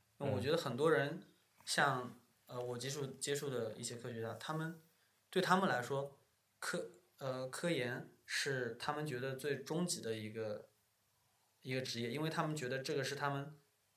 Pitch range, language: 115-145 Hz, Chinese